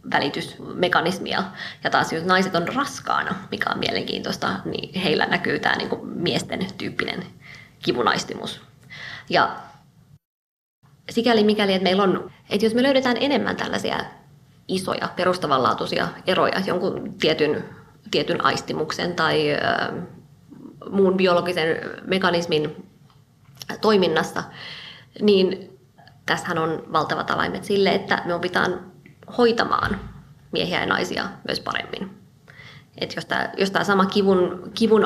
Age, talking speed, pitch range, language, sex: 20-39, 110 wpm, 165-200 Hz, Finnish, female